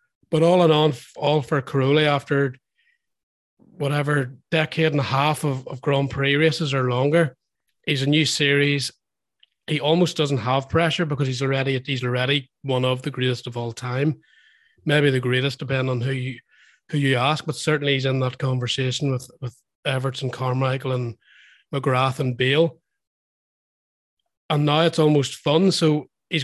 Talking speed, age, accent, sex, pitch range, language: 165 wpm, 30-49, Irish, male, 130-150 Hz, English